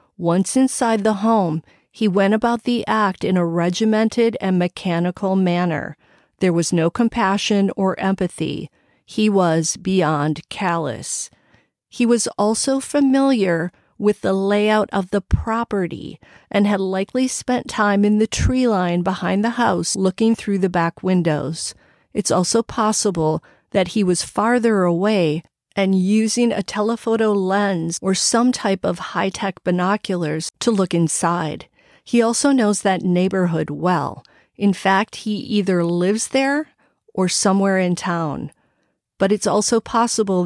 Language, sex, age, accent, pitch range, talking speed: English, female, 40-59, American, 175-220 Hz, 140 wpm